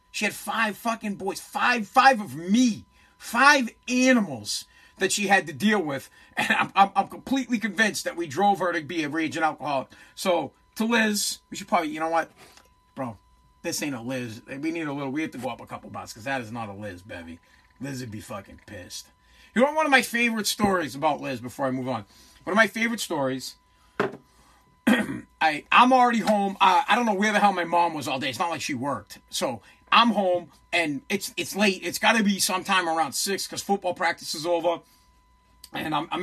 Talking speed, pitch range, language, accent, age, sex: 215 wpm, 160-225 Hz, English, American, 40-59, male